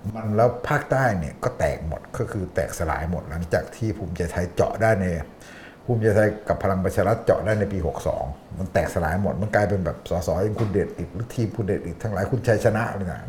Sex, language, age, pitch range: male, Thai, 60-79, 95-115 Hz